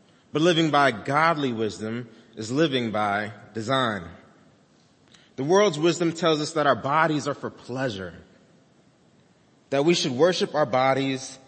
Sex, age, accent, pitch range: male, 30-49, American, 115-160 Hz